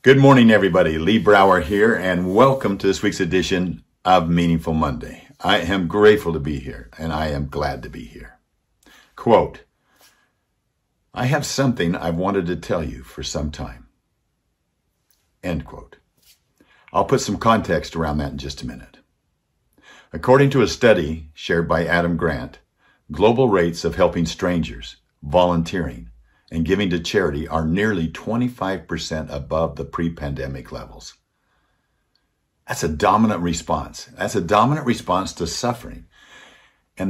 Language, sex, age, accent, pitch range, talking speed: English, male, 60-79, American, 80-105 Hz, 140 wpm